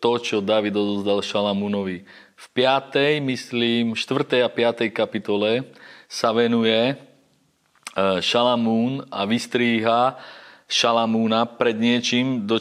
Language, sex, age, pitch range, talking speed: Slovak, male, 30-49, 105-120 Hz, 100 wpm